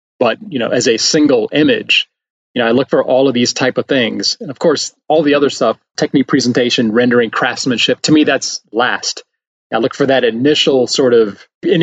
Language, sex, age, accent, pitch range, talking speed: English, male, 30-49, American, 120-150 Hz, 210 wpm